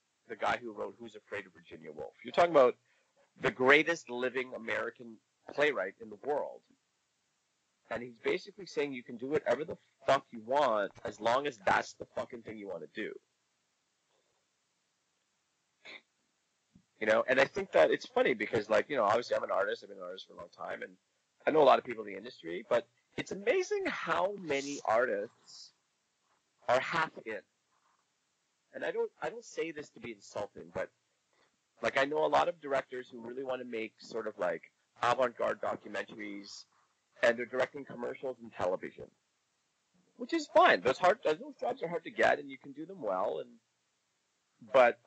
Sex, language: male, English